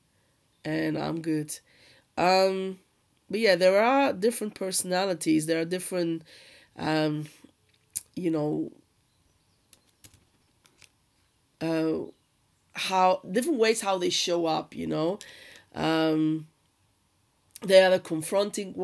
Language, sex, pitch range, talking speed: English, female, 160-185 Hz, 100 wpm